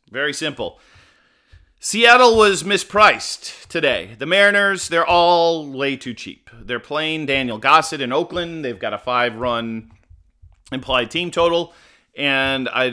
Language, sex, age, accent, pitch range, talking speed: English, male, 40-59, American, 120-155 Hz, 130 wpm